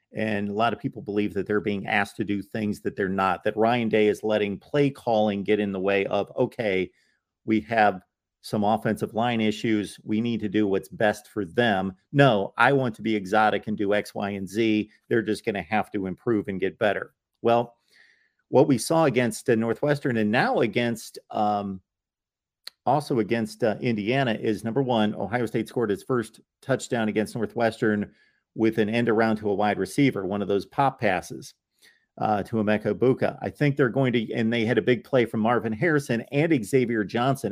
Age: 40-59